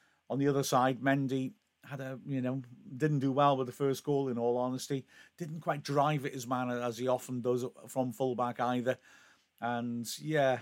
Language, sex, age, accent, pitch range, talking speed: English, male, 50-69, British, 115-130 Hz, 190 wpm